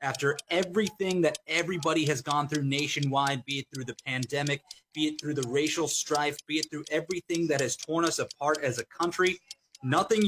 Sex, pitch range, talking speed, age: male, 140-165 Hz, 185 wpm, 30-49